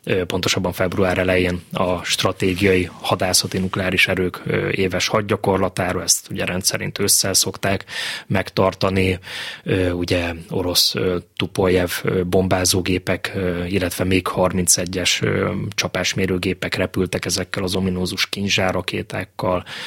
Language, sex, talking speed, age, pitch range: Hungarian, male, 90 wpm, 20-39, 90-100 Hz